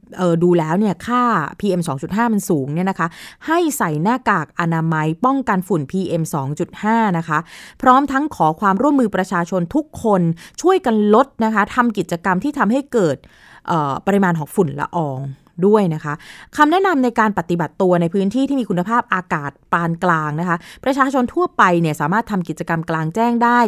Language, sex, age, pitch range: Thai, female, 20-39, 170-245 Hz